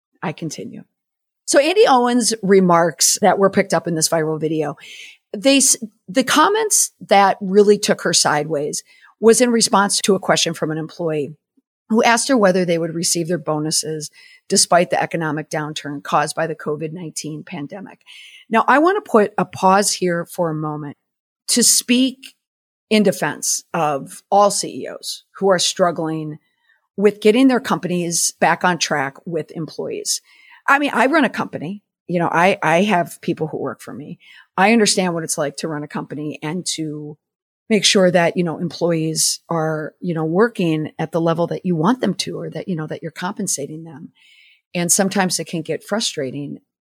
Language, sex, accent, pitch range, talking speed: English, female, American, 160-210 Hz, 175 wpm